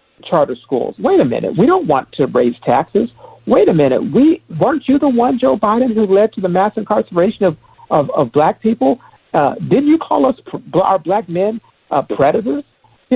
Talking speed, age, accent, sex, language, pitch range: 195 wpm, 50-69, American, male, English, 165-210 Hz